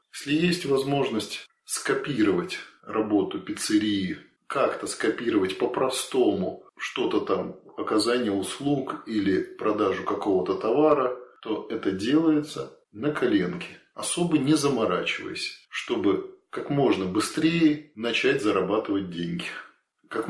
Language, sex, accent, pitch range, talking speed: Russian, male, native, 100-155 Hz, 100 wpm